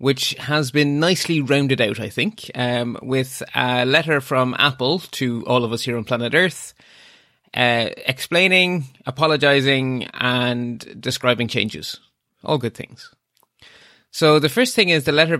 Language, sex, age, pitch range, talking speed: English, male, 20-39, 120-150 Hz, 150 wpm